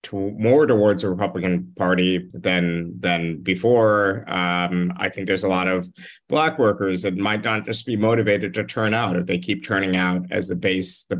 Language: English